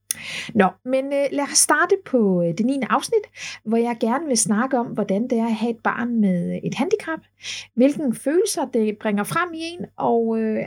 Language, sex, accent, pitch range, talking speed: Danish, female, native, 200-265 Hz, 190 wpm